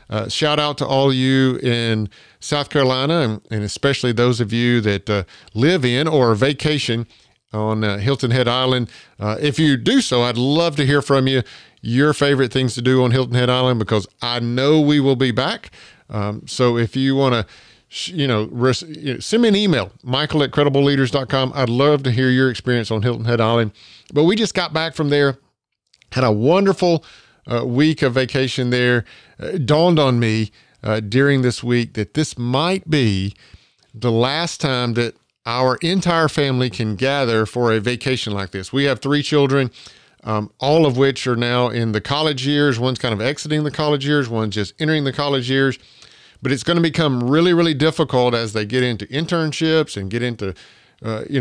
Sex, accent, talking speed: male, American, 195 wpm